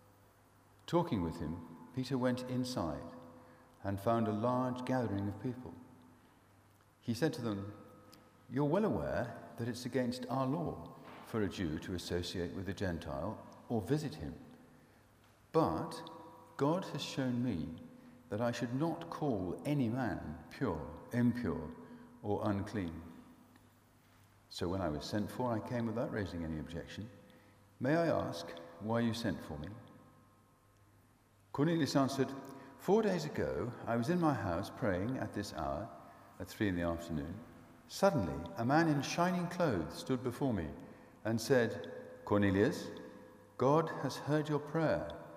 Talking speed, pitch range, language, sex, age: 145 wpm, 95-130 Hz, English, male, 50-69